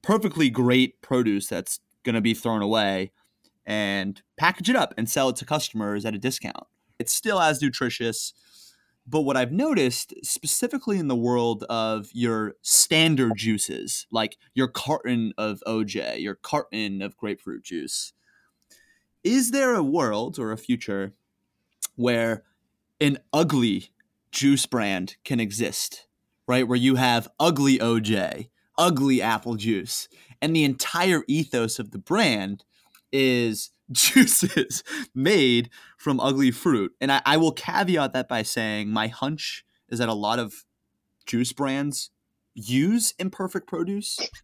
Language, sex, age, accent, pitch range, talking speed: English, male, 20-39, American, 115-150 Hz, 140 wpm